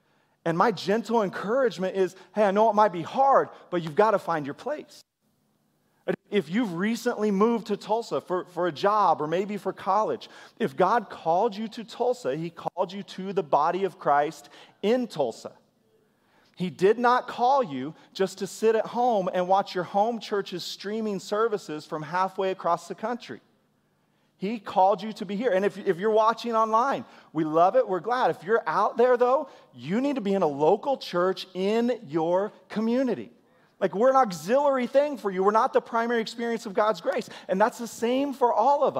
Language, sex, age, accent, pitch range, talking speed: English, male, 40-59, American, 180-230 Hz, 195 wpm